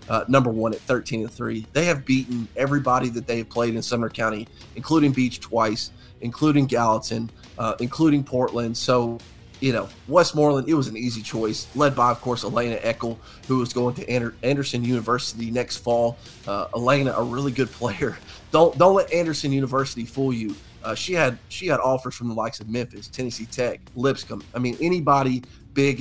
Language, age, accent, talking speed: English, 30-49, American, 185 wpm